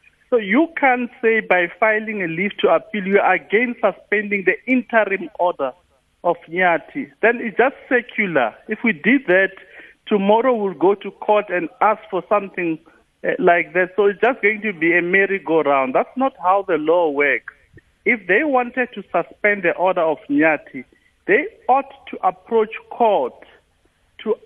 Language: English